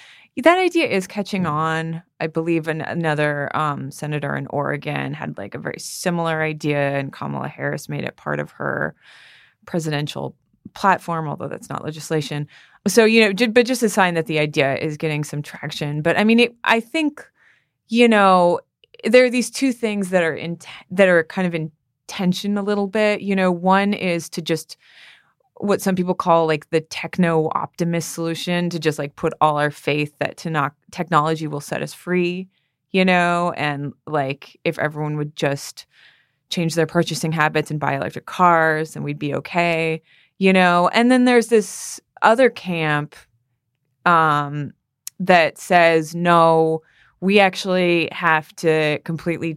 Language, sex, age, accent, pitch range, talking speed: English, female, 20-39, American, 150-185 Hz, 165 wpm